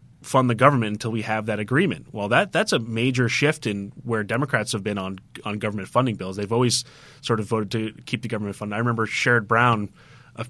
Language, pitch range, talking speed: English, 105-130 Hz, 225 wpm